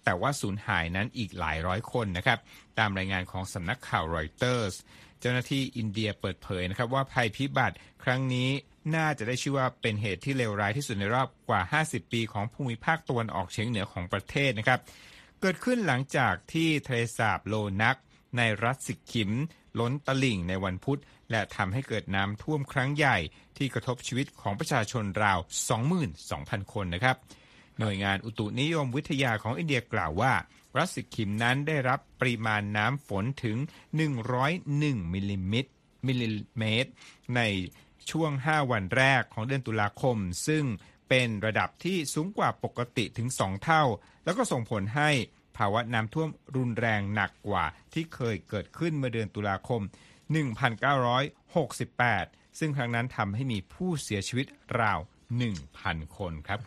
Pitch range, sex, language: 100-135 Hz, male, Thai